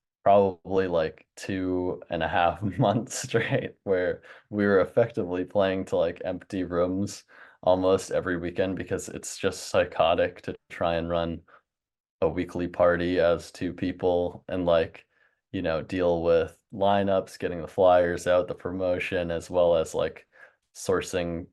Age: 20-39